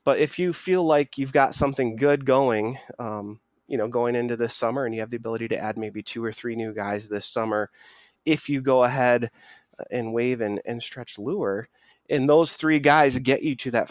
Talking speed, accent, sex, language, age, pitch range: 215 wpm, American, male, English, 20-39, 110-140 Hz